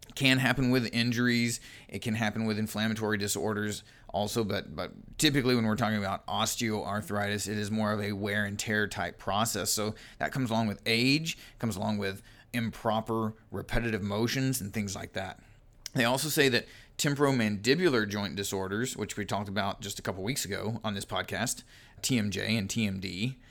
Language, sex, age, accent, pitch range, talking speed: English, male, 30-49, American, 105-130 Hz, 170 wpm